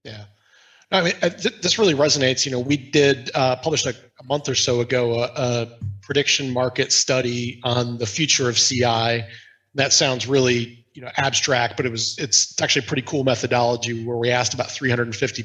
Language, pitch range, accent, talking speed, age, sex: English, 120-140 Hz, American, 200 wpm, 30-49, male